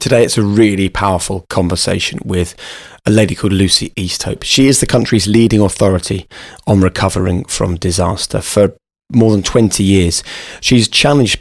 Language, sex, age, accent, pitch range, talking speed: English, male, 30-49, British, 95-115 Hz, 155 wpm